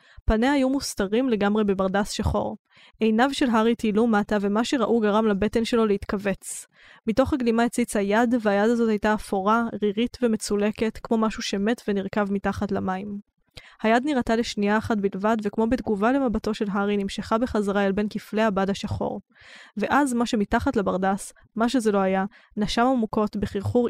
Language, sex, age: Hebrew, female, 10-29